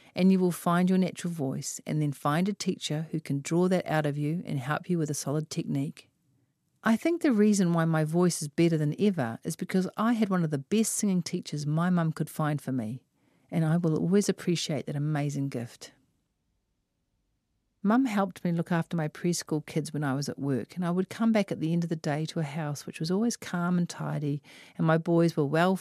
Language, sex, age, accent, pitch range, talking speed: English, female, 50-69, Australian, 145-180 Hz, 230 wpm